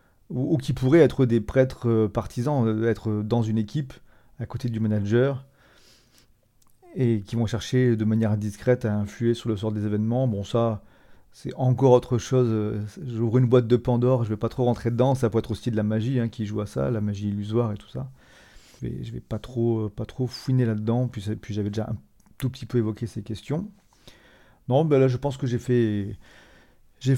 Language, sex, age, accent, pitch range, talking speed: English, male, 40-59, French, 110-130 Hz, 205 wpm